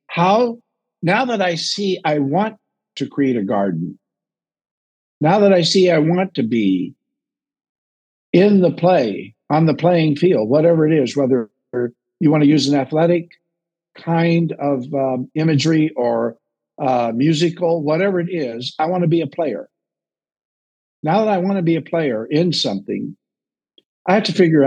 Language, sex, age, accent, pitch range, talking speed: English, male, 60-79, American, 135-175 Hz, 160 wpm